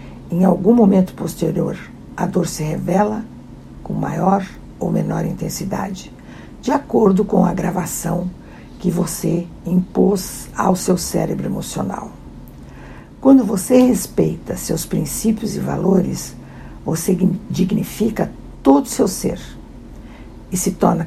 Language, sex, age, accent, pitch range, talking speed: Portuguese, female, 60-79, Brazilian, 180-205 Hz, 115 wpm